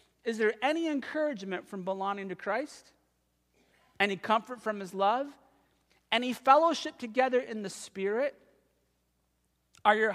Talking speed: 125 wpm